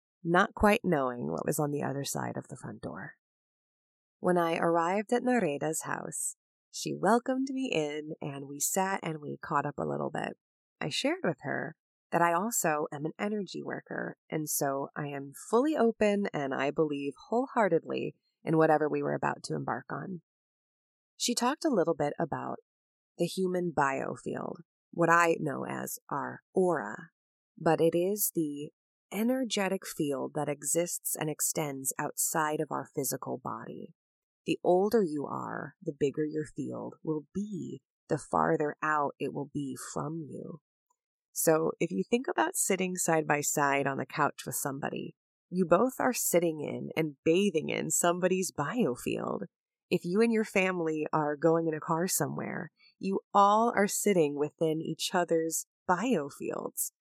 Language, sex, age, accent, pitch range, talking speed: English, female, 20-39, American, 150-195 Hz, 160 wpm